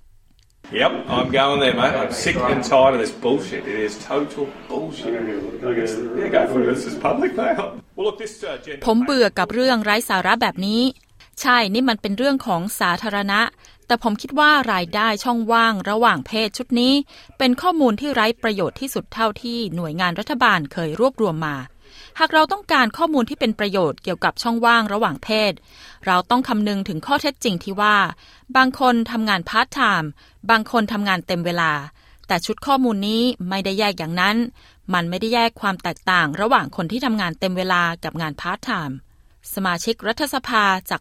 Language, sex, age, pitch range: Thai, female, 30-49, 180-245 Hz